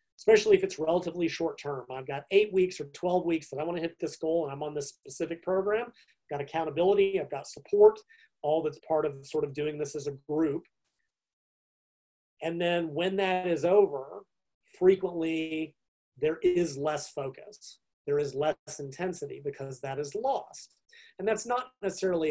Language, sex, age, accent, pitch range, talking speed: English, male, 30-49, American, 145-195 Hz, 175 wpm